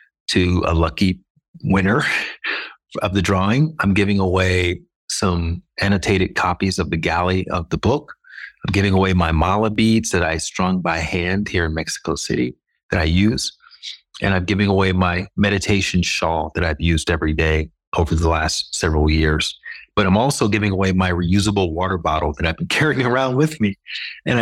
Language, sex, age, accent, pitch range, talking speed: English, male, 30-49, American, 90-105 Hz, 175 wpm